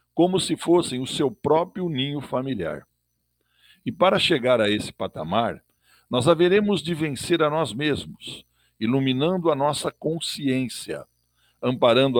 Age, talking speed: 60-79, 130 wpm